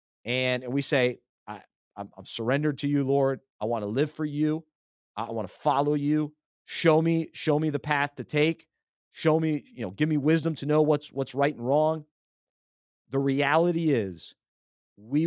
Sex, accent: male, American